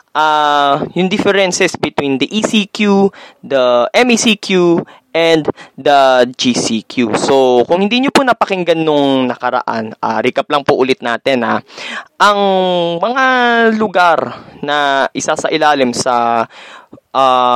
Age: 20-39